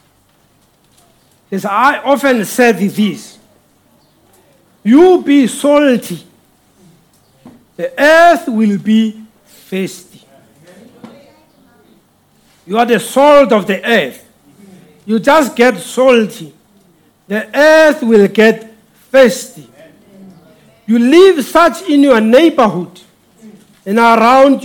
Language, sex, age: English, male, 60-79